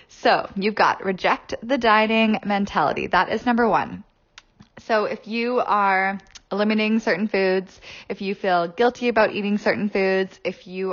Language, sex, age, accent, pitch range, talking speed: English, female, 10-29, American, 185-225 Hz, 155 wpm